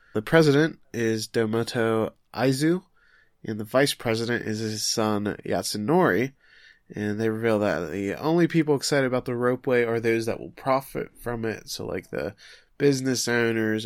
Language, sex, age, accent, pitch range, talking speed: English, male, 20-39, American, 105-120 Hz, 155 wpm